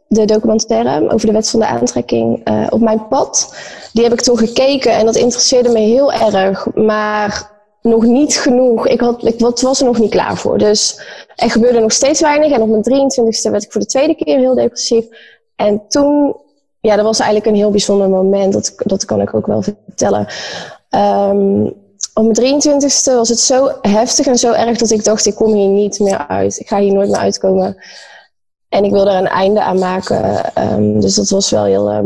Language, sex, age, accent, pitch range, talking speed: Dutch, female, 20-39, Dutch, 205-245 Hz, 215 wpm